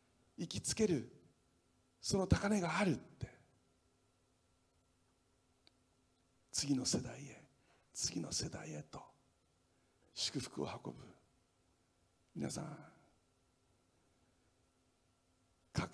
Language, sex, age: Japanese, male, 60-79